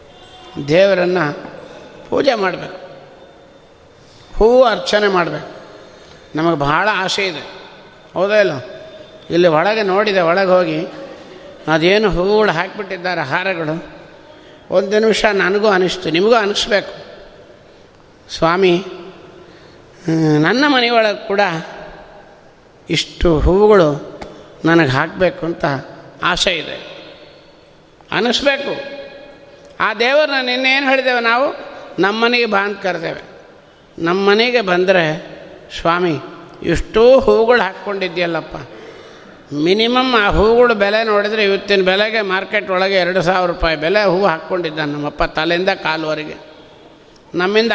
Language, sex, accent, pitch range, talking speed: Kannada, male, native, 175-220 Hz, 90 wpm